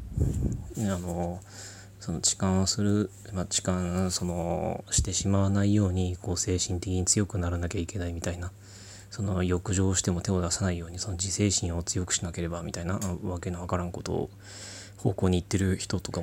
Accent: native